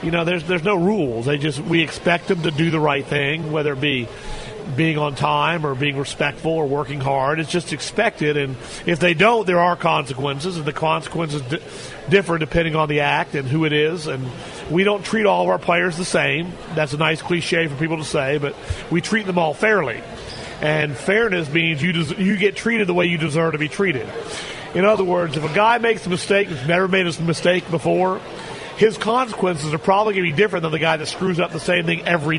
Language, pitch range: English, 155-185 Hz